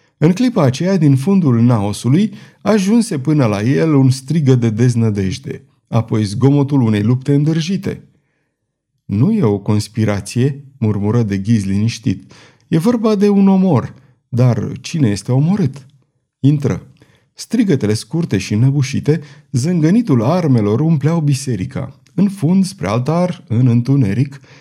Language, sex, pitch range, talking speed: Romanian, male, 115-155 Hz, 125 wpm